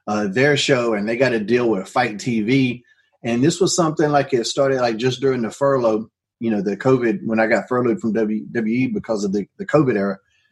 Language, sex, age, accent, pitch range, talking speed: English, male, 30-49, American, 110-140 Hz, 220 wpm